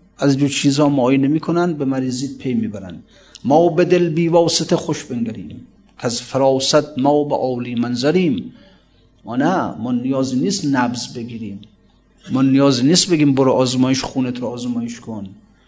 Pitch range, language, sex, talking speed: 125-155 Hz, Persian, male, 145 wpm